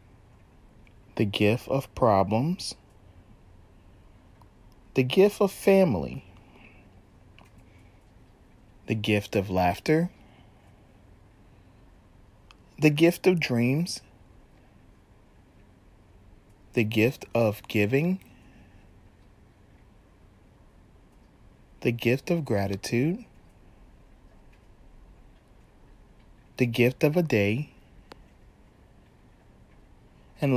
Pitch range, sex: 100-140 Hz, male